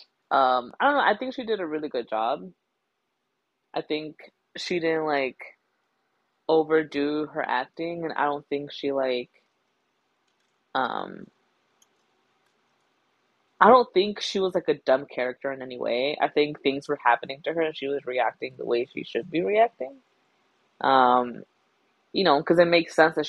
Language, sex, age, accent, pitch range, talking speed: English, female, 20-39, American, 135-175 Hz, 165 wpm